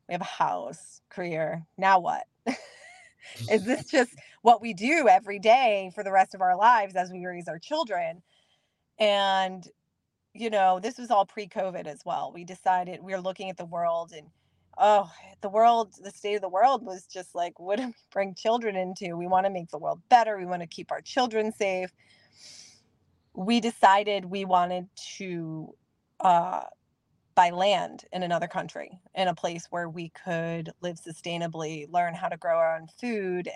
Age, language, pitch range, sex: 30-49, English, 170-200 Hz, female